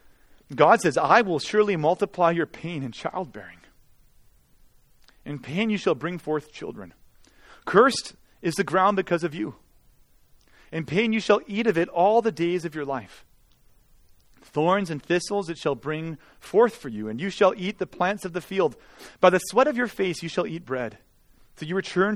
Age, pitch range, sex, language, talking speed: 30-49, 165-230 Hz, male, English, 185 wpm